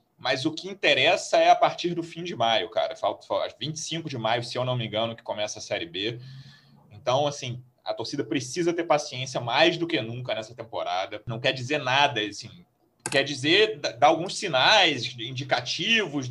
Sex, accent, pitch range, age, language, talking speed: male, Brazilian, 125-210 Hz, 30-49, Portuguese, 185 wpm